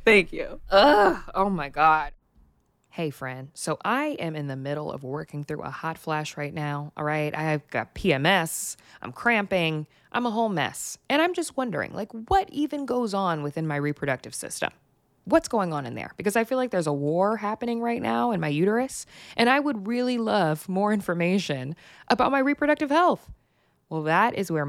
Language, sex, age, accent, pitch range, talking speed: English, female, 20-39, American, 145-205 Hz, 190 wpm